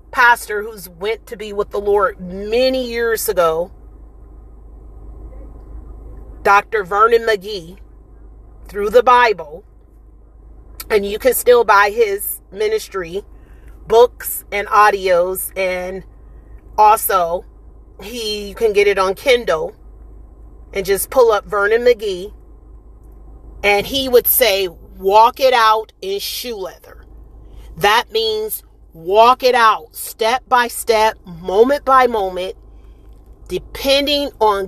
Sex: female